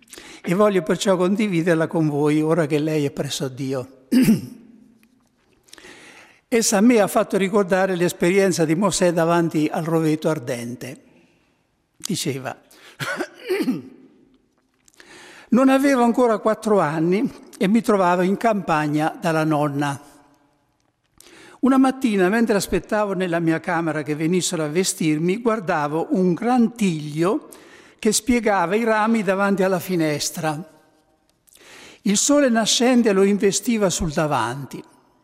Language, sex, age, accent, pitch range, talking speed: Italian, male, 60-79, native, 160-220 Hz, 115 wpm